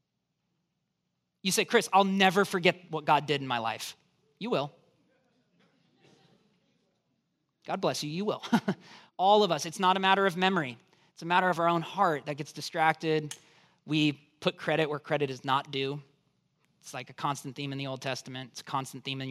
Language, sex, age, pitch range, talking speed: English, male, 30-49, 145-195 Hz, 185 wpm